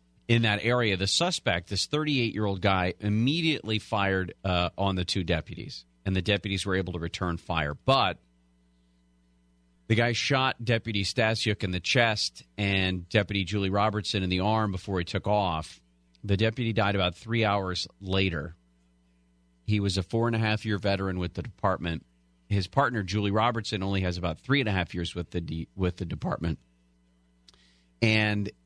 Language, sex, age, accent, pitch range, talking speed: English, male, 40-59, American, 85-110 Hz, 155 wpm